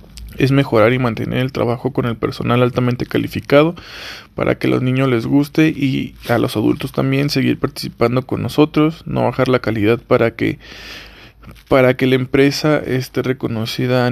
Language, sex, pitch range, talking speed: Spanish, male, 115-135 Hz, 170 wpm